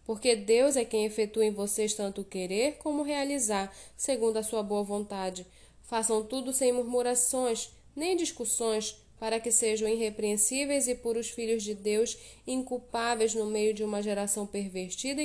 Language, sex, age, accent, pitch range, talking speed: Portuguese, female, 10-29, Brazilian, 215-260 Hz, 155 wpm